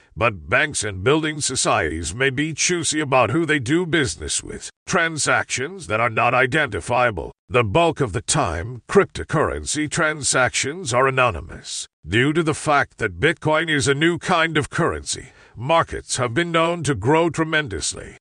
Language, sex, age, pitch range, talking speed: English, male, 50-69, 125-160 Hz, 155 wpm